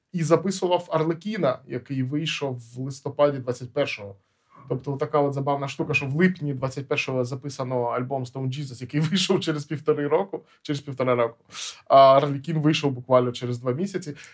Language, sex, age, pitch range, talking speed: Ukrainian, male, 20-39, 135-175 Hz, 155 wpm